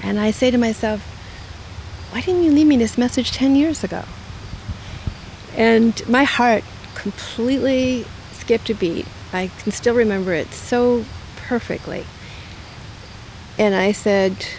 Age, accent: 40-59, American